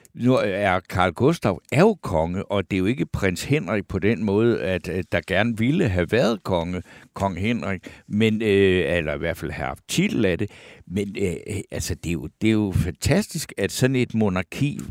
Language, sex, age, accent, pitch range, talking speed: Danish, male, 60-79, native, 95-120 Hz, 200 wpm